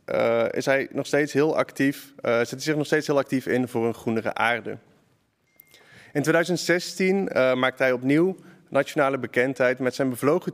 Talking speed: 175 wpm